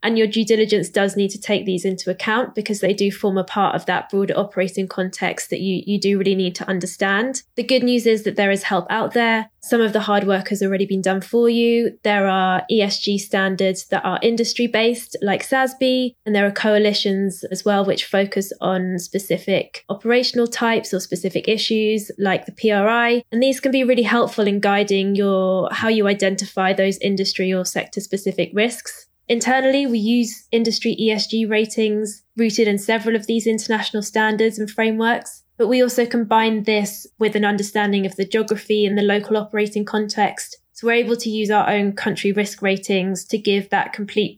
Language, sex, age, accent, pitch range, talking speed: English, female, 20-39, British, 195-225 Hz, 190 wpm